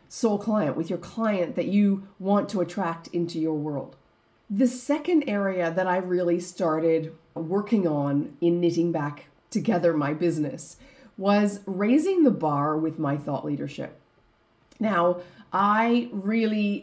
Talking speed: 140 wpm